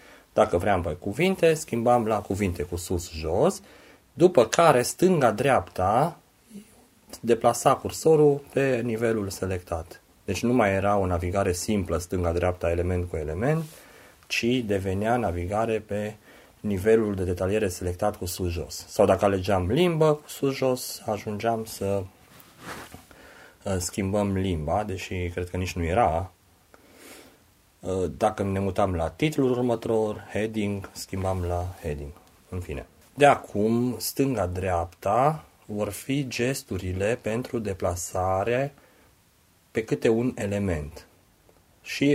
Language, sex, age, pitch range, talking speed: Romanian, male, 30-49, 90-120 Hz, 110 wpm